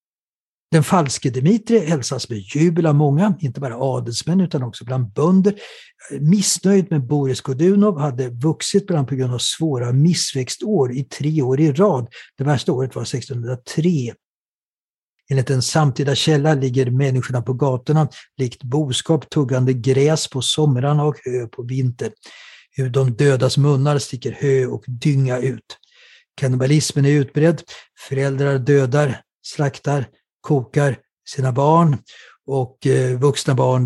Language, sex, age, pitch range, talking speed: English, male, 60-79, 130-150 Hz, 135 wpm